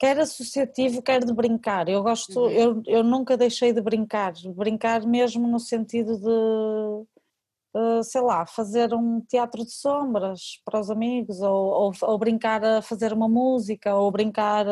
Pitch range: 210-245 Hz